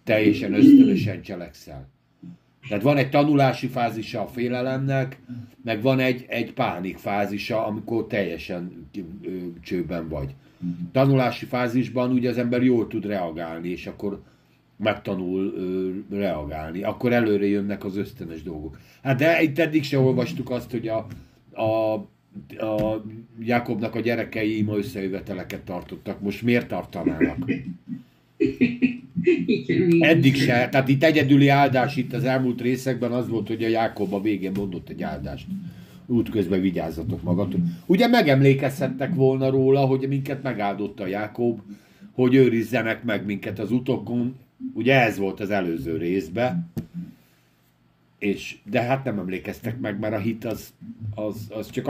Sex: male